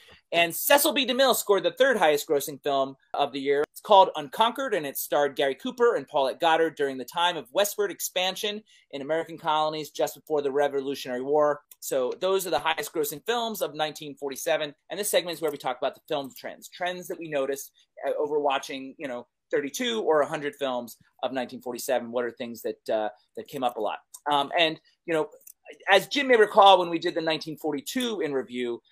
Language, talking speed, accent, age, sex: English, 195 wpm, American, 30-49, male